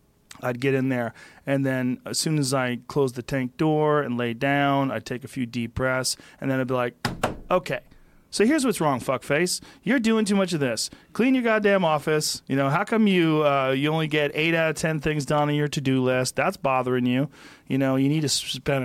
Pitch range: 130-160 Hz